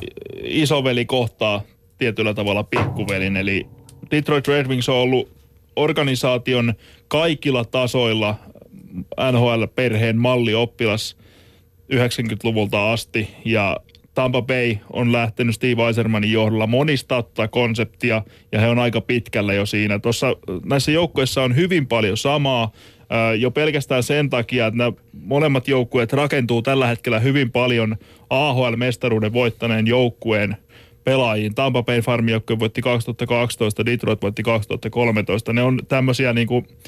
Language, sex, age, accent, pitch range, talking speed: Finnish, male, 20-39, native, 110-130 Hz, 115 wpm